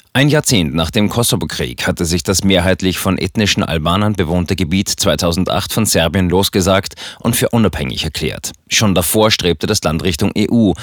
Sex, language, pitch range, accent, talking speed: male, German, 85-110 Hz, German, 160 wpm